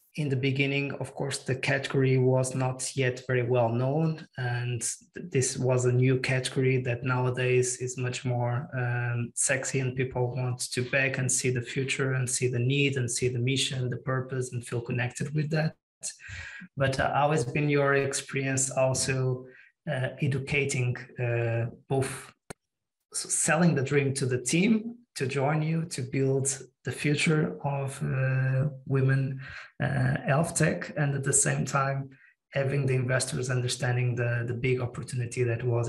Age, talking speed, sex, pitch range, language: 20-39, 160 wpm, male, 125-140 Hz, English